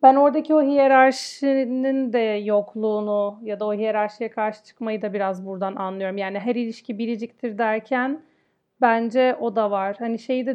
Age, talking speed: 40-59, 160 wpm